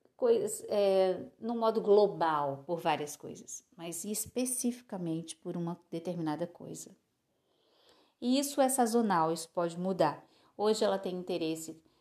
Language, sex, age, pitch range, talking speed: Portuguese, female, 50-69, 170-230 Hz, 115 wpm